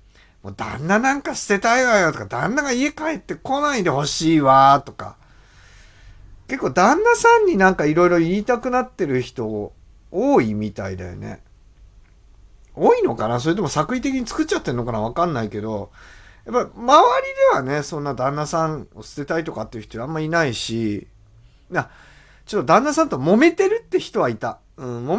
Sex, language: male, Japanese